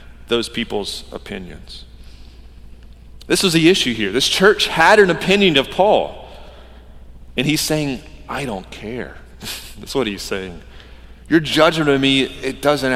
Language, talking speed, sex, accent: English, 145 wpm, male, American